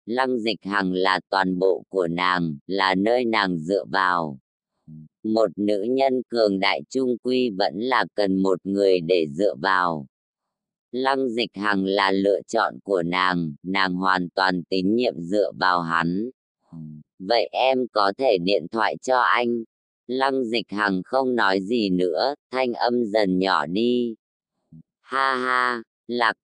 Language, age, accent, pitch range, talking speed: English, 20-39, American, 90-120 Hz, 150 wpm